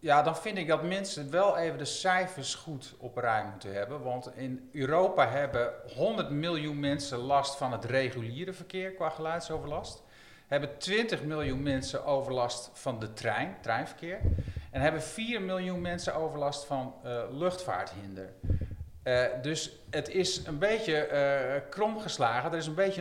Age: 40-59